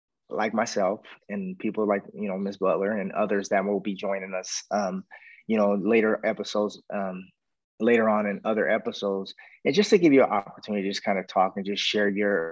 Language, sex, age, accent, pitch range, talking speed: English, male, 20-39, American, 100-110 Hz, 205 wpm